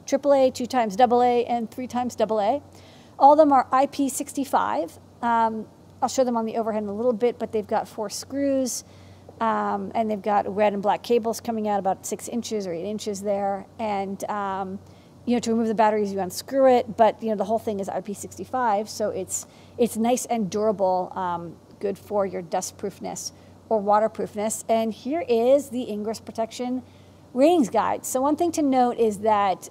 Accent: American